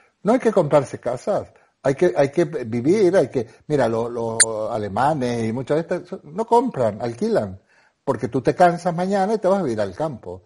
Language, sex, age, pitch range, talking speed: Spanish, male, 60-79, 110-160 Hz, 195 wpm